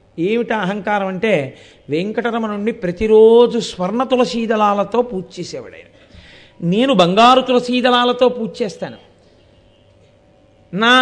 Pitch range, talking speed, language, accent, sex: 185-250 Hz, 85 wpm, Telugu, native, male